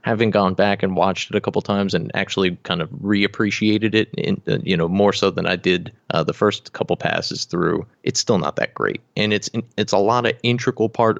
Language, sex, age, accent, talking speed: English, male, 30-49, American, 225 wpm